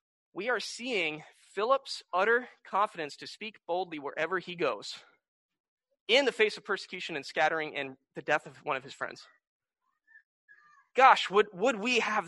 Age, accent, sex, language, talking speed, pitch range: 20-39, American, male, English, 155 wpm, 160-275 Hz